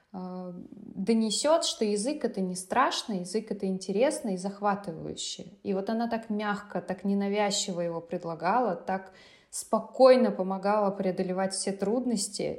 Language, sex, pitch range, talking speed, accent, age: Russian, female, 185-220 Hz, 125 wpm, native, 20-39